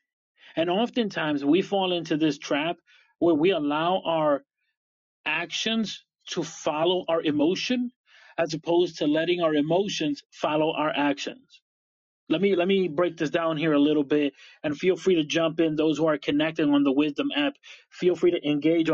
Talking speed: 170 wpm